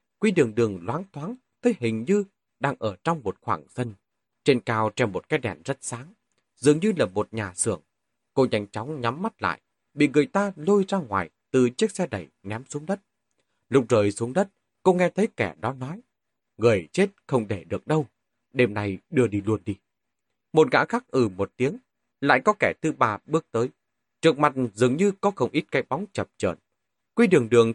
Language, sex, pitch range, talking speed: Vietnamese, male, 110-175 Hz, 210 wpm